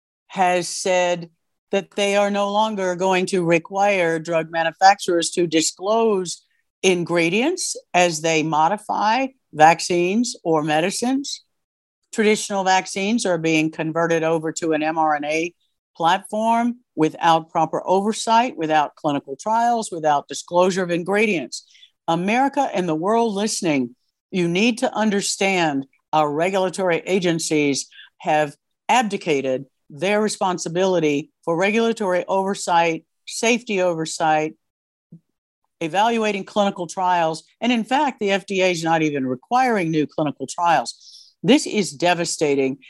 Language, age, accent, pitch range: English, 60-79, American, 160-205 Hz